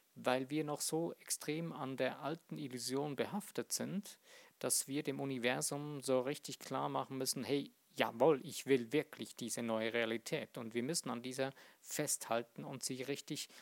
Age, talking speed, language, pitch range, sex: 50-69, 165 wpm, German, 125-155 Hz, male